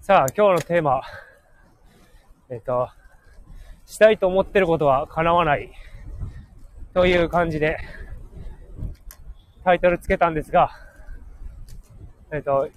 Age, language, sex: 20-39, Japanese, male